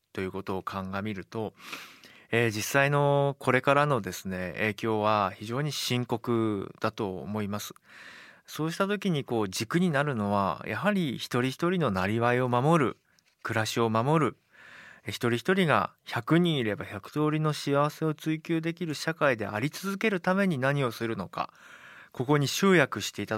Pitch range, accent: 115-155 Hz, native